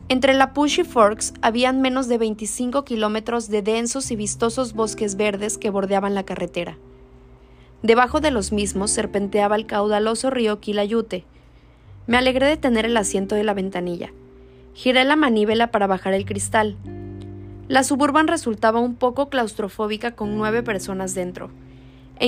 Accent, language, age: Mexican, Spanish, 20-39